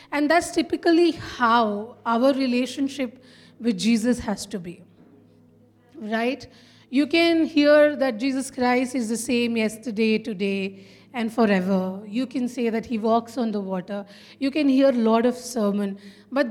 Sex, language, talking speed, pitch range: female, English, 155 wpm, 215-270 Hz